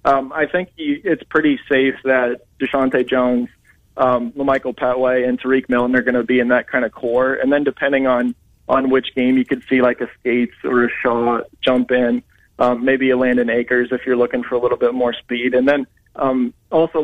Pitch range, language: 125-130 Hz, English